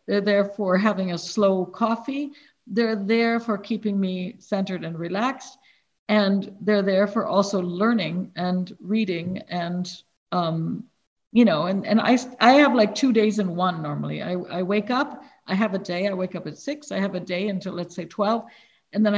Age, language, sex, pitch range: 50-69, English, female, 200-260 Hz